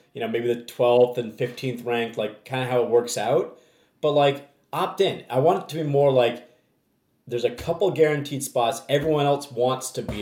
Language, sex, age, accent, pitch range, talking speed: English, male, 30-49, American, 120-145 Hz, 210 wpm